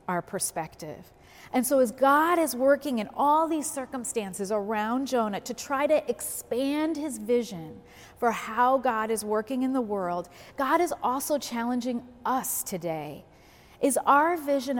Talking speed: 150 wpm